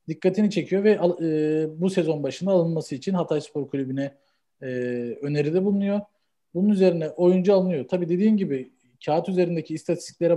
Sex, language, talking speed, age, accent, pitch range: male, Turkish, 145 wpm, 40-59, native, 150-185 Hz